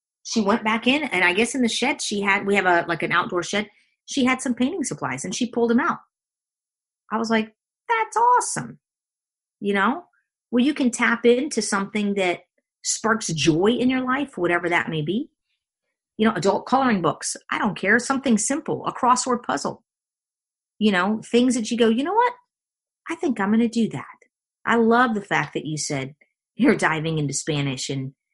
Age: 40-59